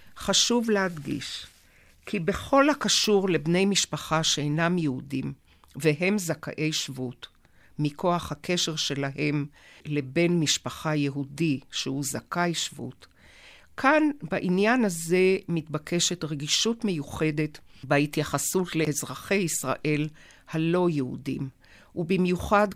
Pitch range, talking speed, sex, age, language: 145-180 Hz, 85 wpm, female, 50-69, Hebrew